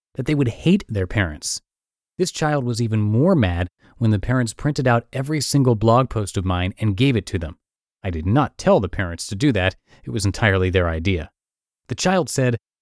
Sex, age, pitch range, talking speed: male, 30-49, 100-135 Hz, 210 wpm